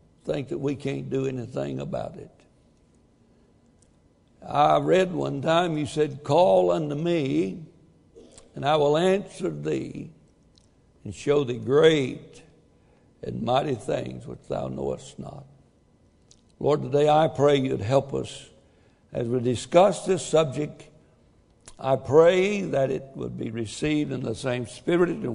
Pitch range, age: 125-160 Hz, 60-79